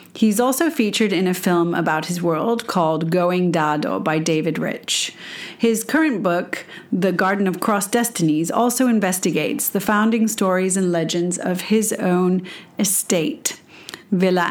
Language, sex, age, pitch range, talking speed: English, female, 40-59, 175-220 Hz, 145 wpm